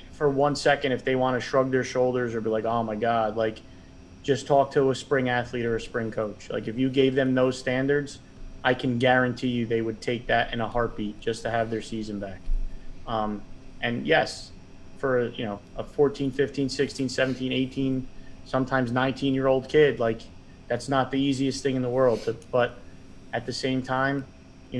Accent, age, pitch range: American, 30-49, 110-130 Hz